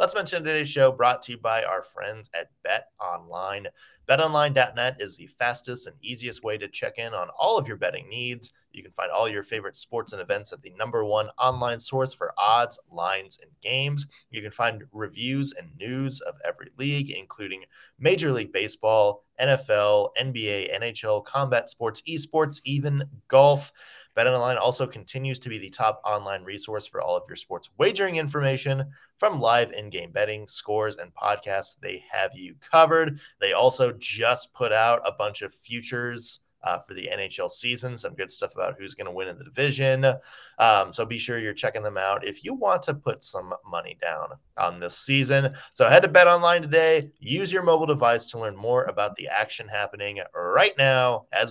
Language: English